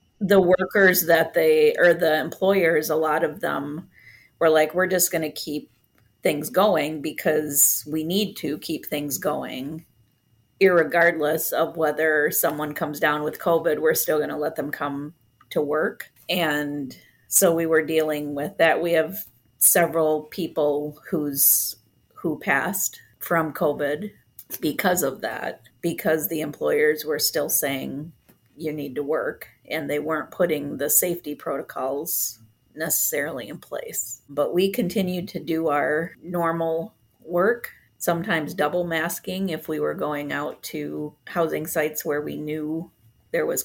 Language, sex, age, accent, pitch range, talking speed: English, female, 30-49, American, 150-175 Hz, 145 wpm